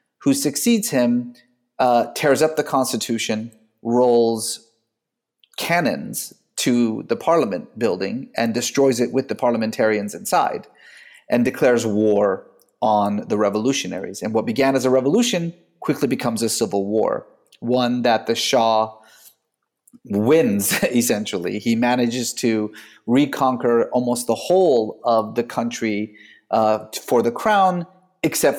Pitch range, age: 110-135 Hz, 30-49